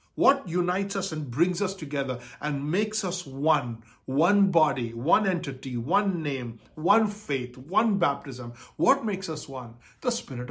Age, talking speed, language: 60-79, 155 wpm, English